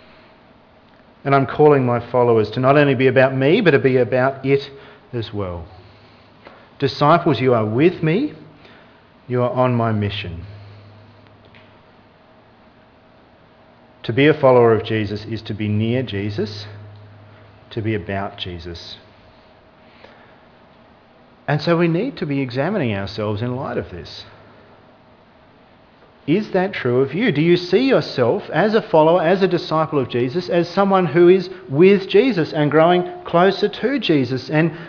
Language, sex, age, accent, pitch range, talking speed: English, male, 40-59, Australian, 110-180 Hz, 145 wpm